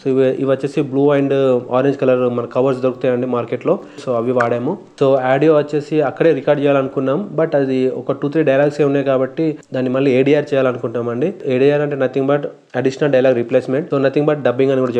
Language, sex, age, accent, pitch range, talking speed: Telugu, male, 30-49, native, 125-140 Hz, 195 wpm